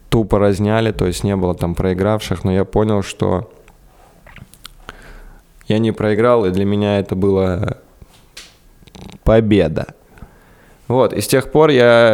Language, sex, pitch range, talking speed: Russian, male, 95-110 Hz, 135 wpm